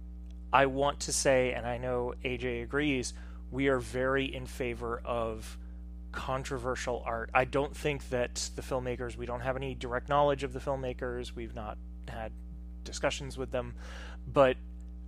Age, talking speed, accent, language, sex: 30-49, 155 wpm, American, English, male